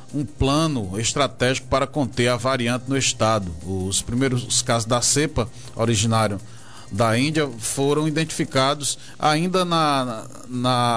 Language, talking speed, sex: Portuguese, 120 wpm, male